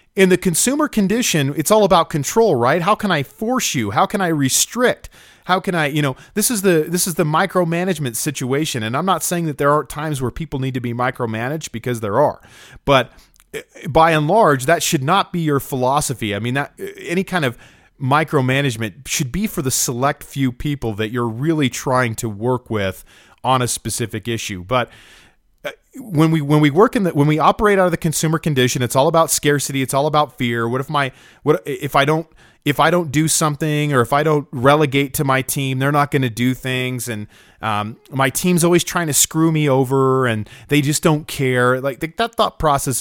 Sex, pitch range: male, 125-165 Hz